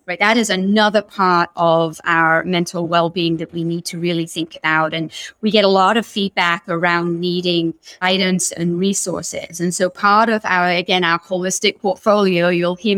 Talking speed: 180 wpm